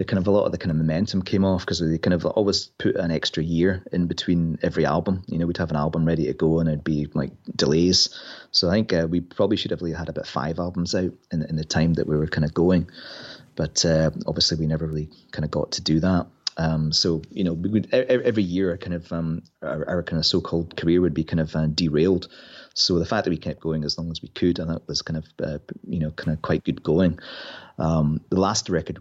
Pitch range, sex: 80-90 Hz, male